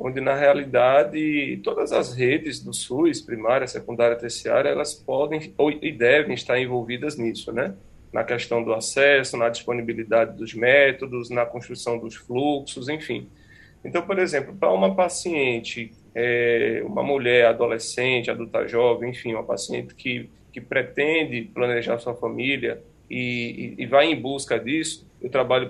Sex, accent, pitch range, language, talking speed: male, Brazilian, 120-145 Hz, Portuguese, 140 wpm